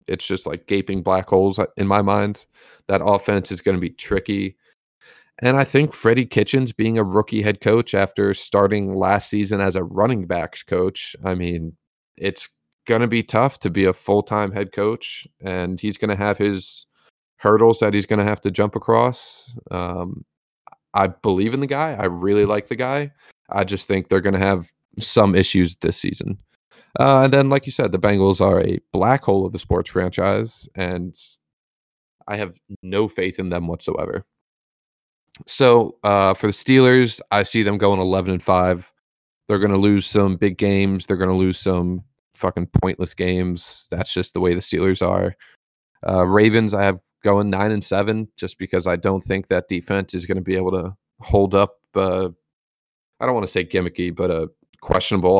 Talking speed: 190 wpm